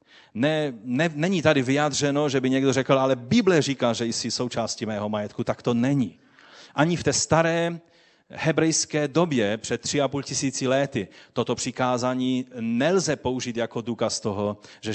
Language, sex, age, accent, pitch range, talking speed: Czech, male, 30-49, native, 115-150 Hz, 160 wpm